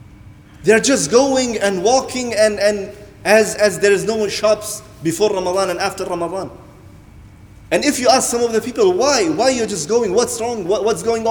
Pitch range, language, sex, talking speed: 165-235 Hz, English, male, 195 wpm